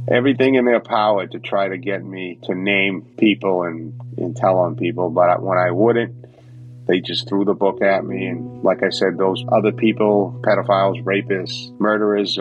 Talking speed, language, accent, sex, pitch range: 185 wpm, English, American, male, 95-120 Hz